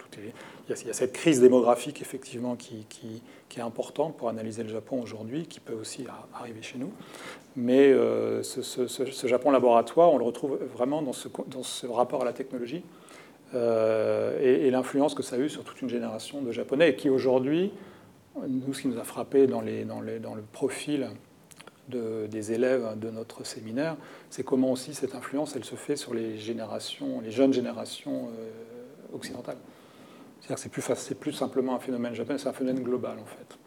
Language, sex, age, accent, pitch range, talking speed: French, male, 40-59, French, 115-135 Hz, 190 wpm